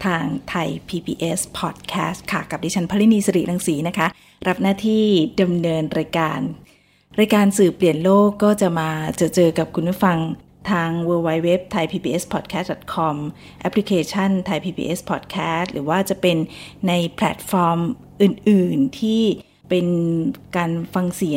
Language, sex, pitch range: Thai, female, 160-195 Hz